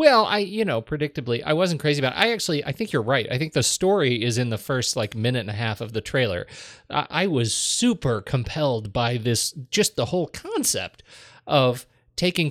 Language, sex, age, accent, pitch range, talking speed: English, male, 30-49, American, 115-150 Hz, 215 wpm